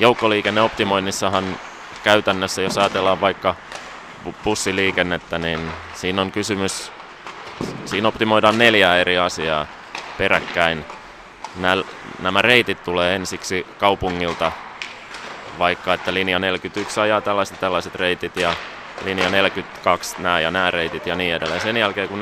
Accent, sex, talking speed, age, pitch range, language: native, male, 115 wpm, 20-39, 85-100 Hz, Finnish